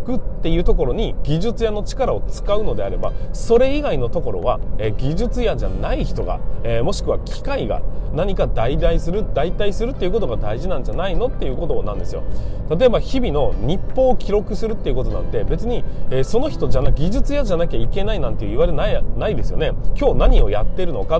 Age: 20-39